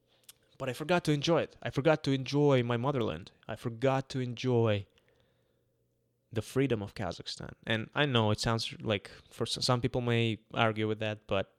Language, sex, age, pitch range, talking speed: English, male, 20-39, 110-140 Hz, 175 wpm